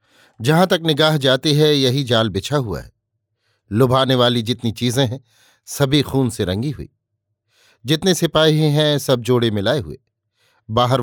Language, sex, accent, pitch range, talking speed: Hindi, male, native, 110-140 Hz, 150 wpm